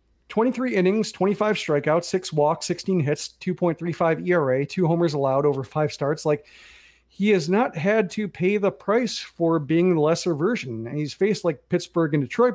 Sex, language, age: male, English, 30-49